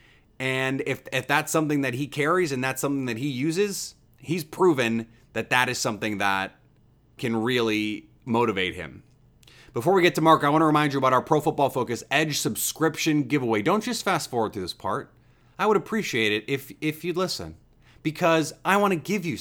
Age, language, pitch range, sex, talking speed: 30-49, English, 120-155 Hz, male, 200 wpm